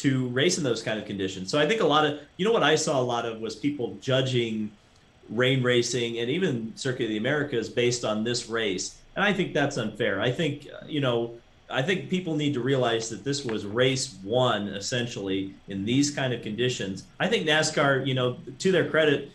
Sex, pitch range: male, 115-140 Hz